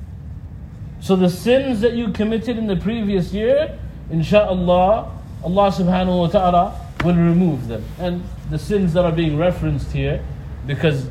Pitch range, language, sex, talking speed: 145-220 Hz, English, male, 145 wpm